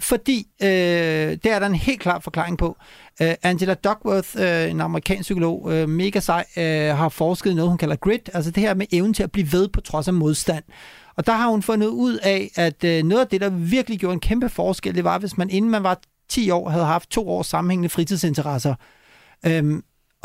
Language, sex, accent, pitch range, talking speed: Danish, male, native, 170-210 Hz, 220 wpm